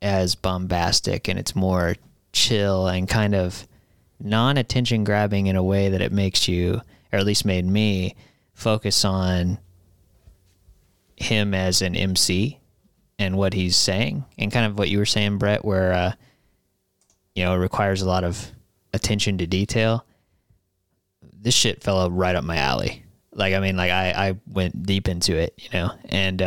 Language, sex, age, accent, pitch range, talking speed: English, male, 20-39, American, 95-115 Hz, 165 wpm